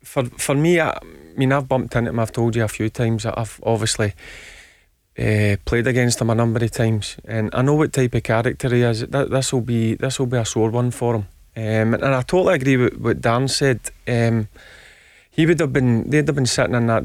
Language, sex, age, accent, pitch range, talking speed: English, male, 30-49, British, 115-130 Hz, 230 wpm